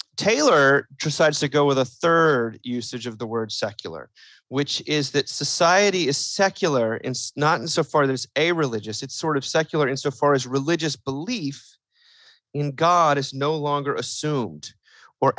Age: 30-49